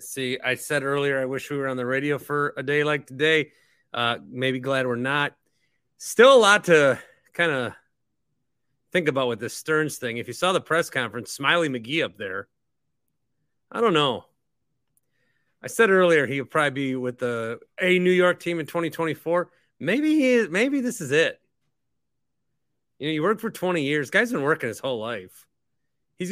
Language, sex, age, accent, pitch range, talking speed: English, male, 30-49, American, 130-165 Hz, 185 wpm